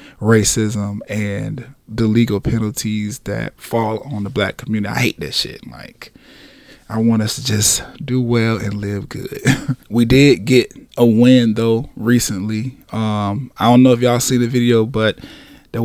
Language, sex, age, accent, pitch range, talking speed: English, male, 20-39, American, 110-125 Hz, 165 wpm